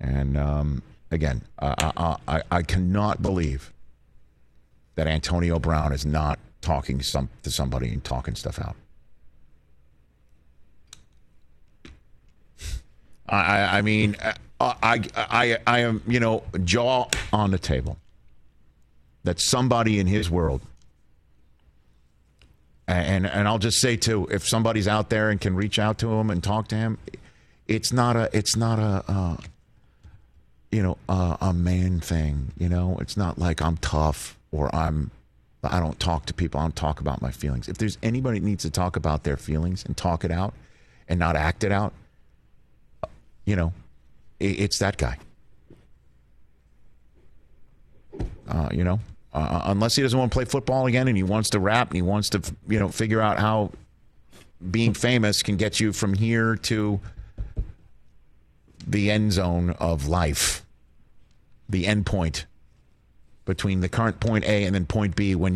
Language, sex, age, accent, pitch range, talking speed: English, male, 50-69, American, 75-105 Hz, 155 wpm